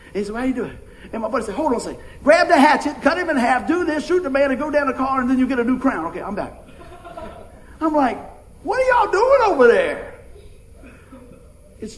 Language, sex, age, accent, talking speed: English, male, 50-69, American, 255 wpm